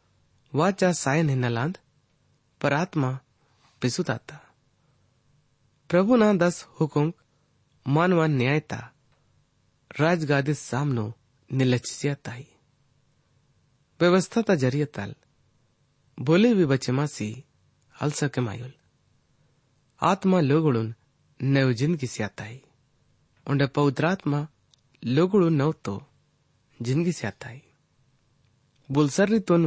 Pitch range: 125-150 Hz